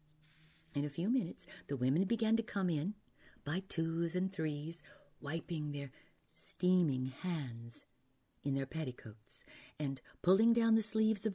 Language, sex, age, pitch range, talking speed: English, female, 50-69, 140-200 Hz, 145 wpm